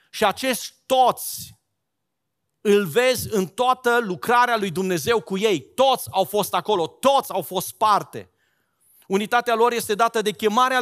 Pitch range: 195-235 Hz